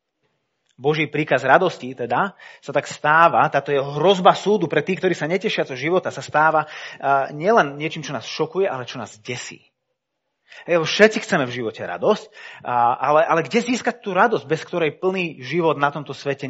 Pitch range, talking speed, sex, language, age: 145-195 Hz, 180 wpm, male, Slovak, 30-49